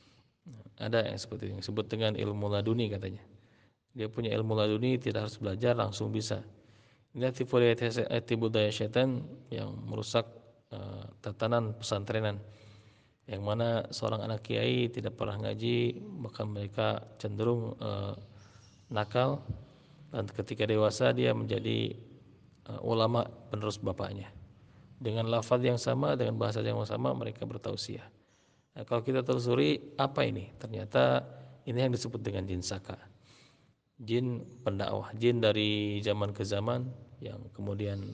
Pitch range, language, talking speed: 105-120 Hz, Malay, 130 wpm